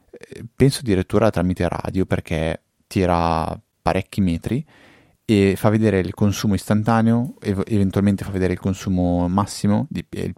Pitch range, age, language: 90-105 Hz, 20-39, Italian